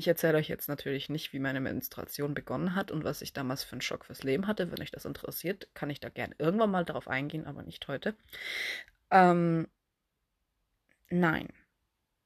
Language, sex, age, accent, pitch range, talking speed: German, female, 20-39, German, 145-175 Hz, 185 wpm